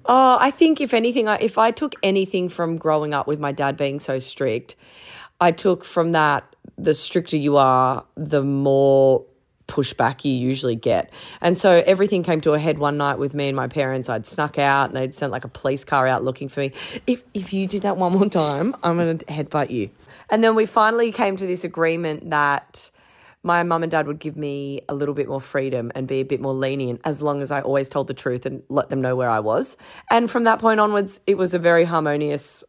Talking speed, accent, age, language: 230 wpm, Australian, 30-49, English